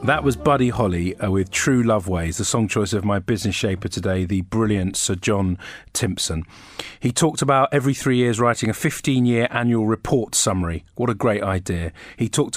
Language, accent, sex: English, British, male